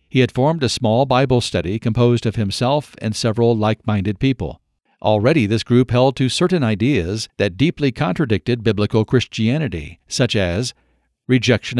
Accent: American